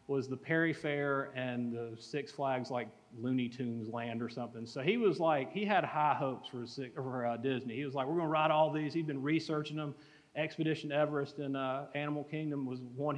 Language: English